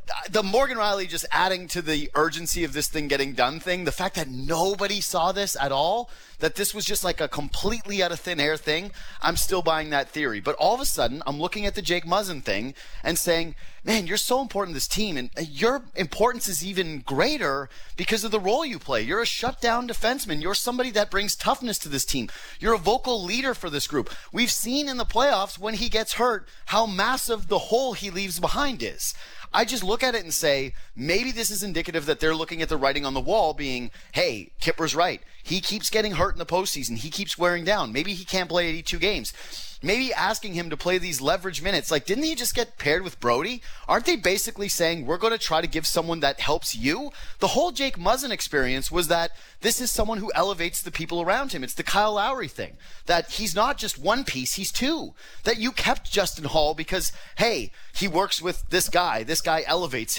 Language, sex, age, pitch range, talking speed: English, male, 30-49, 160-220 Hz, 220 wpm